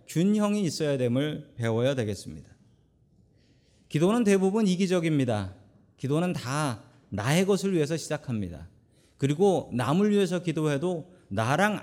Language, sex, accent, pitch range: Korean, male, native, 125-175 Hz